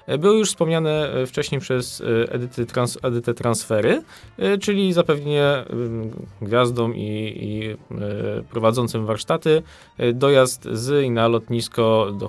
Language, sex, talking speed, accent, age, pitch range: Polish, male, 105 wpm, native, 20-39, 110-130 Hz